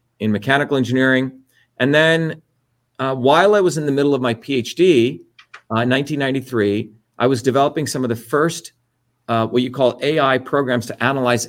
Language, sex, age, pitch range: English, male, 40-59, 120-140 Hz